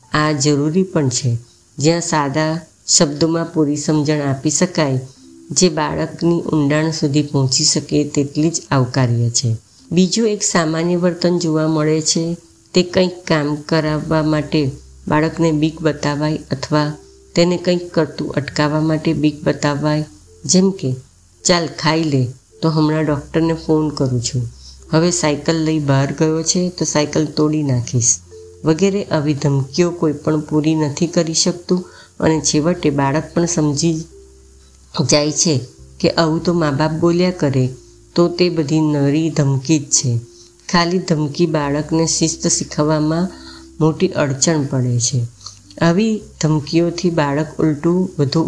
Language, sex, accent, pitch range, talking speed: Gujarati, female, native, 140-165 Hz, 95 wpm